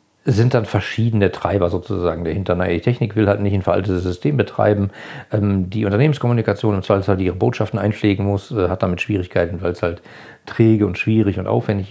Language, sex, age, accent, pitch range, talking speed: German, male, 40-59, German, 100-125 Hz, 190 wpm